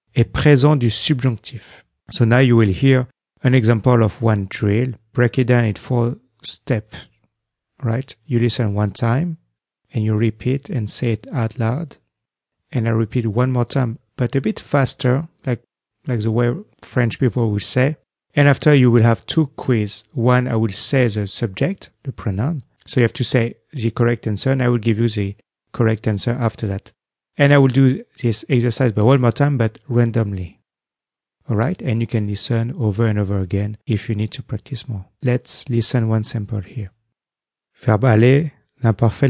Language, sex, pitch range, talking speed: English, male, 110-130 Hz, 185 wpm